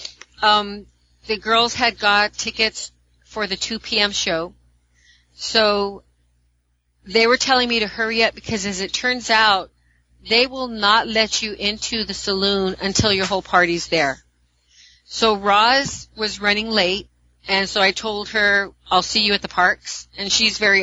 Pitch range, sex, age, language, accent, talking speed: 180-210 Hz, female, 40-59, English, American, 160 wpm